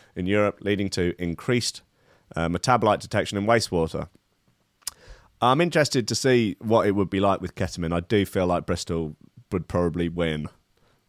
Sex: male